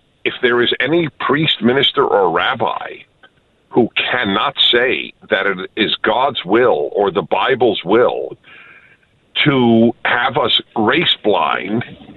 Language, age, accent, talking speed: English, 50-69, American, 120 wpm